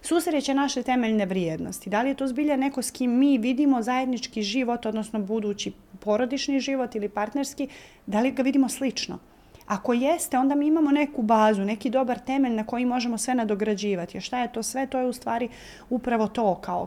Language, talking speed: Croatian, 190 wpm